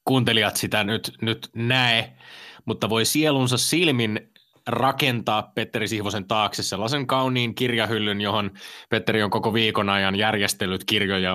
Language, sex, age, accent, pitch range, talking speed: Finnish, male, 20-39, native, 110-130 Hz, 125 wpm